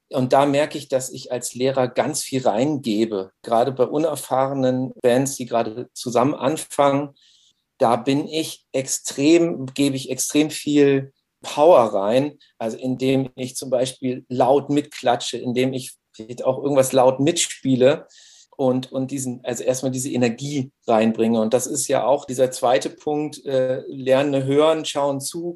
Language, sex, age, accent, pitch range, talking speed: German, male, 50-69, German, 125-145 Hz, 150 wpm